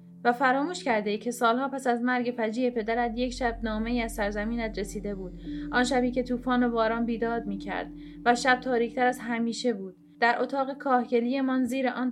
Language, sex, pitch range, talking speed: Persian, female, 210-255 Hz, 190 wpm